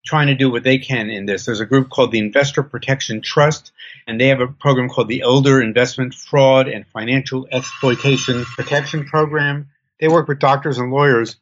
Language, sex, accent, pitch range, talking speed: English, male, American, 115-140 Hz, 195 wpm